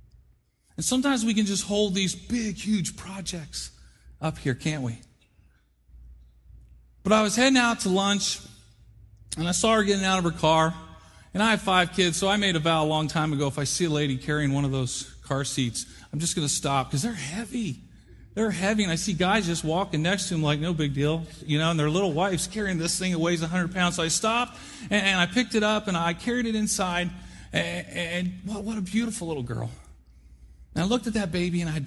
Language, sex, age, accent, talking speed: English, male, 40-59, American, 230 wpm